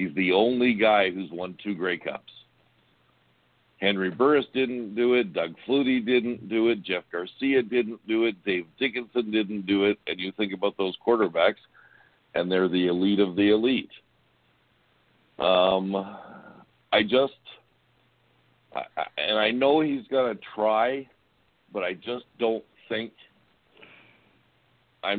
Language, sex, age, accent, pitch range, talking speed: English, male, 60-79, American, 95-120 Hz, 140 wpm